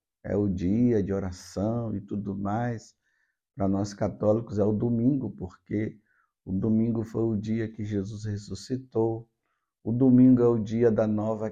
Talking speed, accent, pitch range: 155 wpm, Brazilian, 110-140 Hz